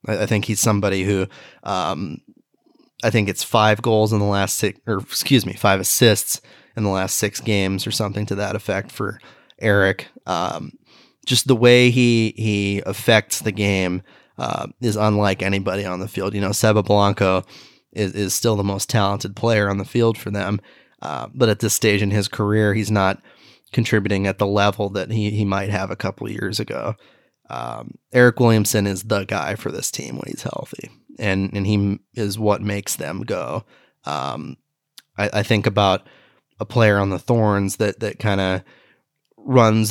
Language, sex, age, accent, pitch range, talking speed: English, male, 20-39, American, 100-110 Hz, 185 wpm